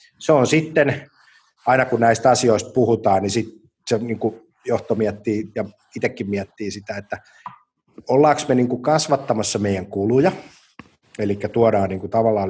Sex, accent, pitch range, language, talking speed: male, native, 105-125 Hz, Finnish, 140 wpm